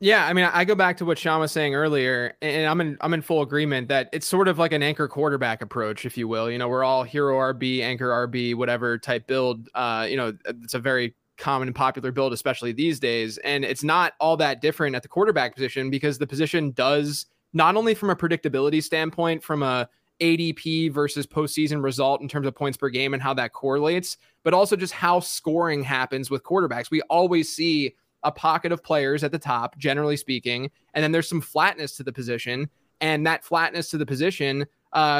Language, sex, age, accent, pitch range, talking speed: English, male, 20-39, American, 130-160 Hz, 215 wpm